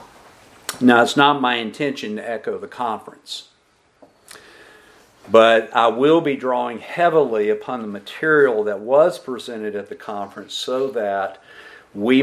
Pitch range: 105-150 Hz